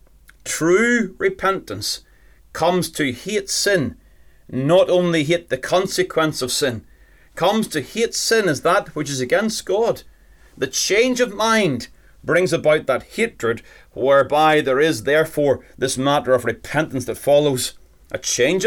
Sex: male